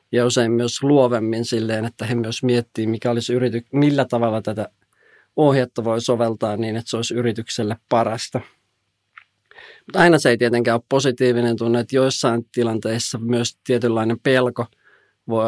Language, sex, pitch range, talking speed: Finnish, male, 115-125 Hz, 145 wpm